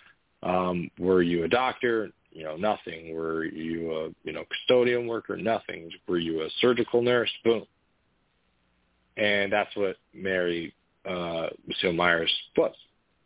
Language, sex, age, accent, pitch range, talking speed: English, male, 40-59, American, 90-115 Hz, 135 wpm